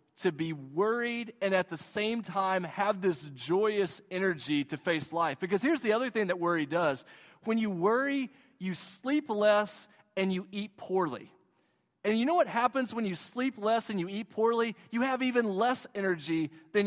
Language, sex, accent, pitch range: English, male, American, 190-255 Hz